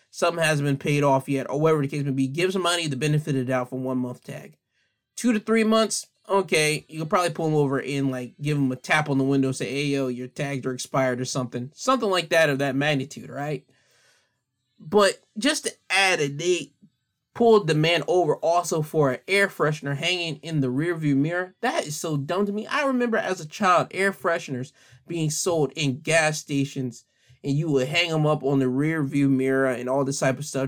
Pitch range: 135-175 Hz